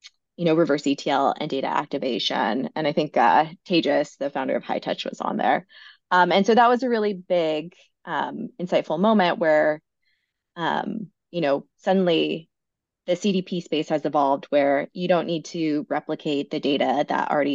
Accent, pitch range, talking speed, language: American, 145-180 Hz, 175 wpm, English